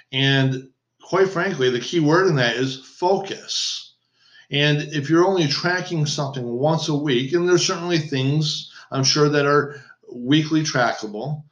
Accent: American